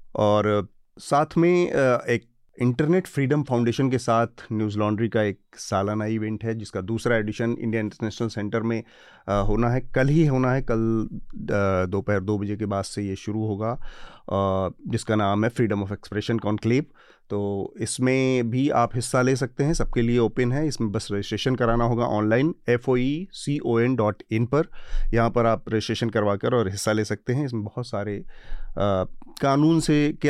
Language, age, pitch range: Hindi, 30-49, 105-125 Hz